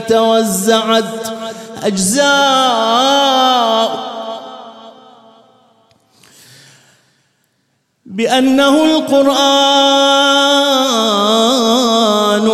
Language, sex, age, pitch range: English, male, 30-49, 210-225 Hz